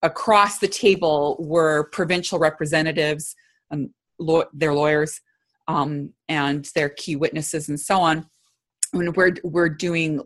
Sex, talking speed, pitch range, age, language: female, 130 wpm, 155-200 Hz, 30-49, English